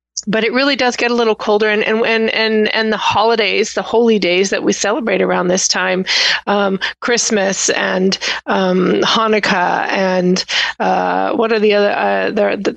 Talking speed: 165 wpm